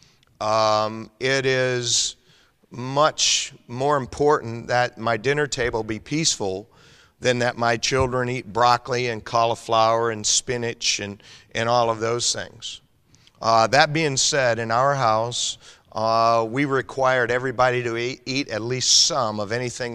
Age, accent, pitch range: 40-59, American, 115-140 Hz